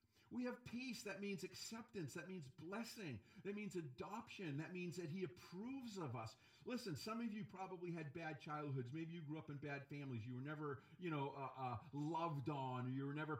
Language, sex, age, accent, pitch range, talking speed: English, male, 40-59, American, 135-180 Hz, 205 wpm